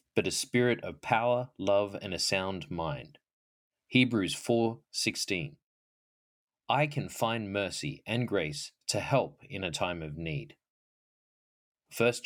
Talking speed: 125 wpm